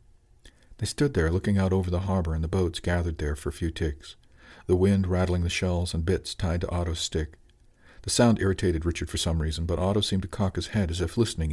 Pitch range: 85-105 Hz